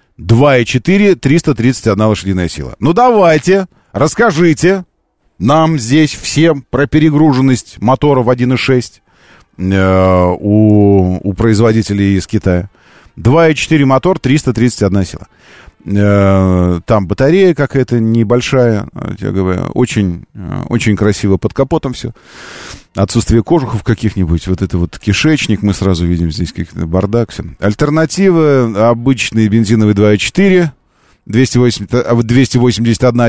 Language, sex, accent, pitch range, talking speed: Russian, male, native, 95-130 Hz, 95 wpm